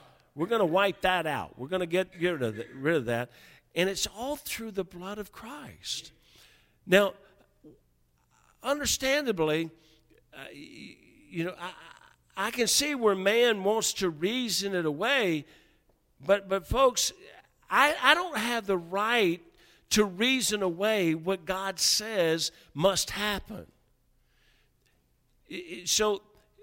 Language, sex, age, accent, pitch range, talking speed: English, male, 50-69, American, 165-215 Hz, 125 wpm